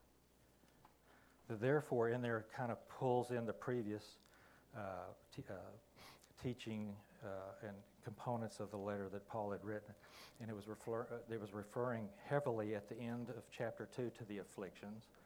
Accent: American